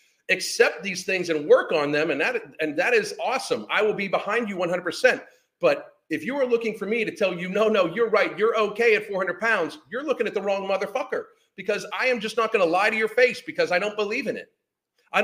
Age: 40-59